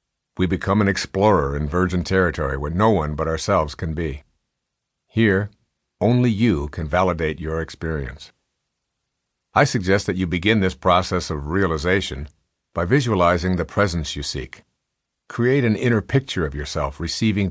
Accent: American